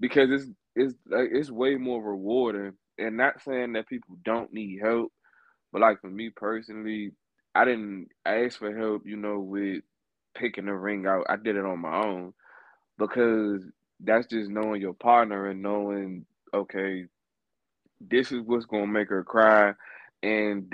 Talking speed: 170 wpm